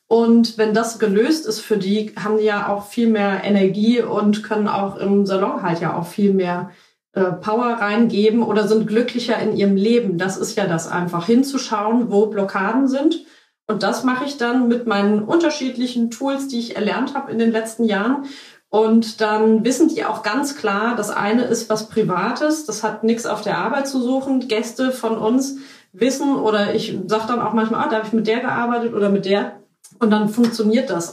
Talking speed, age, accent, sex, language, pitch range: 195 wpm, 30-49, German, female, German, 205-240 Hz